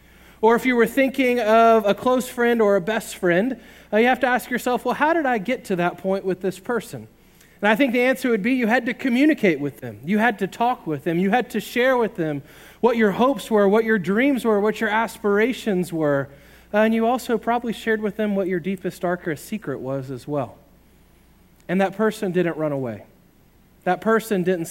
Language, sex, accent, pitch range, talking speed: English, male, American, 150-220 Hz, 225 wpm